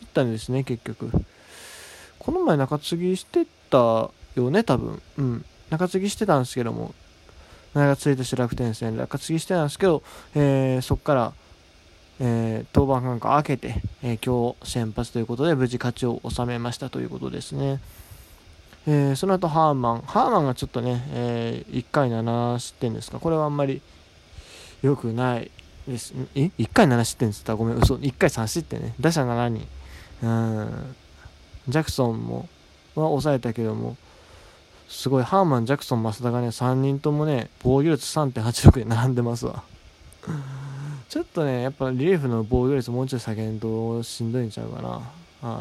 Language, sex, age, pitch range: Japanese, male, 20-39, 115-145 Hz